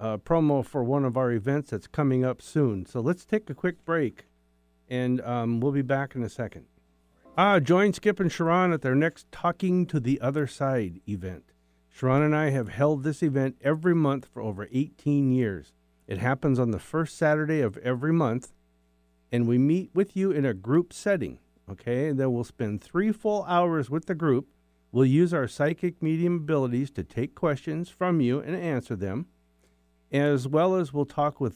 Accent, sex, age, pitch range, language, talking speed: American, male, 50-69, 115-155 Hz, English, 195 wpm